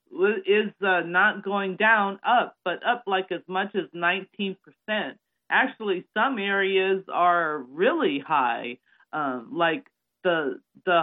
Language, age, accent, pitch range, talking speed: English, 40-59, American, 175-220 Hz, 120 wpm